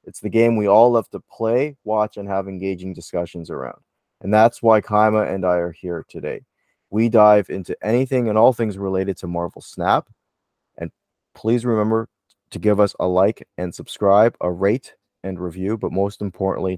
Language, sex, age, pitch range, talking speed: English, male, 20-39, 90-105 Hz, 180 wpm